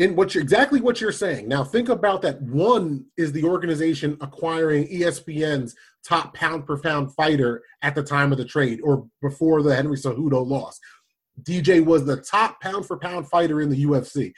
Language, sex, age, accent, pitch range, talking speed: English, male, 30-49, American, 130-165 Hz, 170 wpm